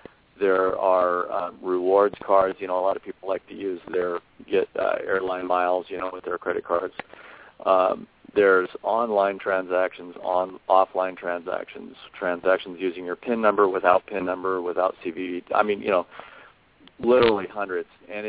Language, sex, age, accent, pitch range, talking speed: English, male, 40-59, American, 90-110 Hz, 160 wpm